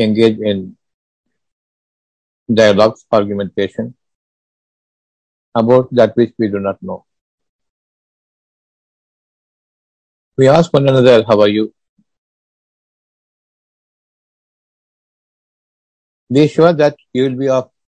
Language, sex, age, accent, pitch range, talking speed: Tamil, male, 50-69, native, 95-130 Hz, 85 wpm